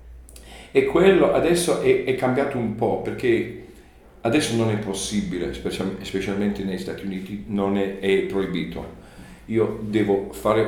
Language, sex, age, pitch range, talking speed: Italian, male, 50-69, 95-120 Hz, 135 wpm